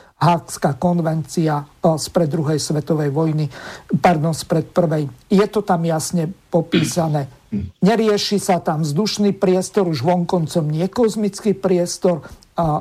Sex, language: male, Slovak